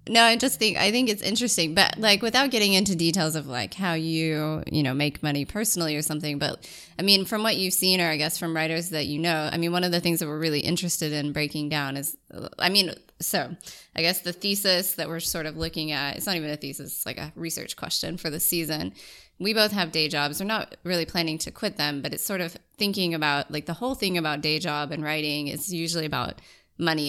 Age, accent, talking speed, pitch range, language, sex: 20-39, American, 245 wpm, 145-175 Hz, English, female